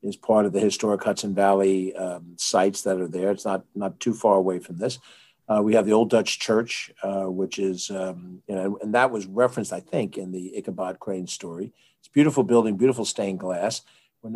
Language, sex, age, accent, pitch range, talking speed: English, male, 50-69, American, 100-120 Hz, 215 wpm